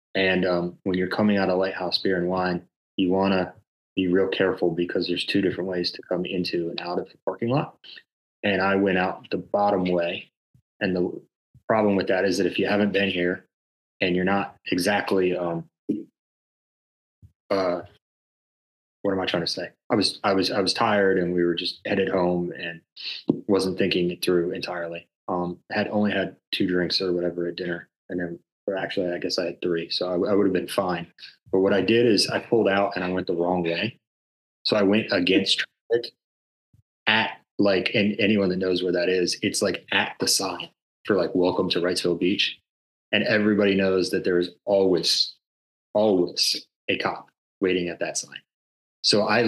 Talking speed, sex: 195 wpm, male